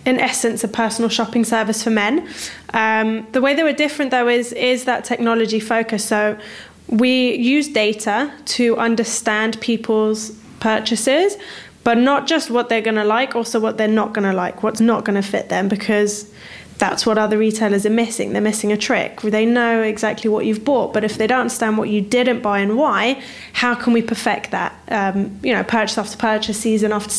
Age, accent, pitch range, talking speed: 10-29, British, 215-245 Hz, 200 wpm